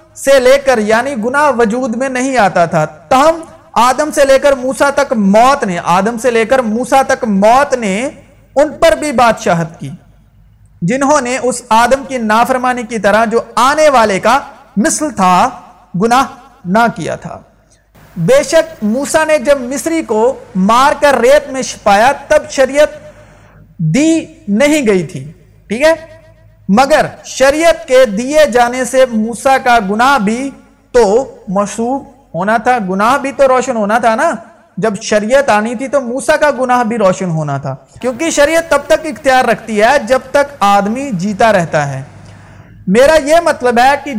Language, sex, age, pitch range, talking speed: Urdu, male, 50-69, 205-280 Hz, 165 wpm